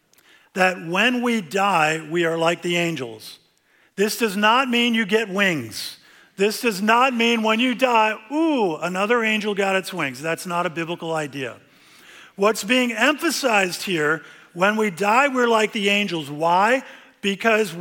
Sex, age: male, 50-69